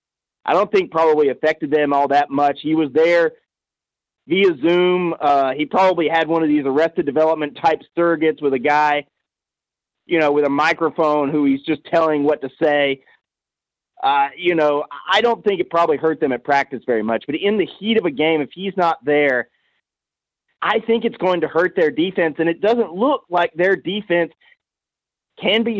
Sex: male